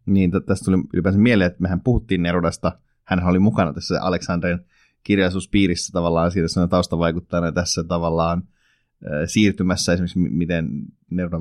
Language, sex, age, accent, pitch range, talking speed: Finnish, male, 30-49, native, 85-105 Hz, 145 wpm